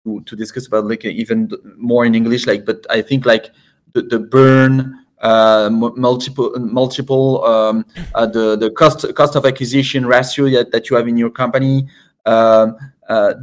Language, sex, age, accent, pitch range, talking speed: English, male, 20-39, French, 115-140 Hz, 165 wpm